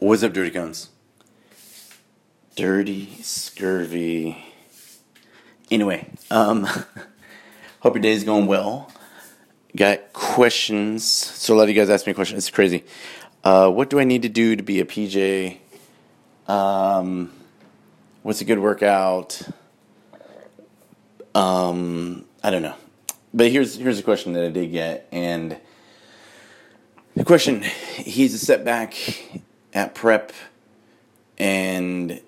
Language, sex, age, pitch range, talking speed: English, male, 30-49, 85-100 Hz, 120 wpm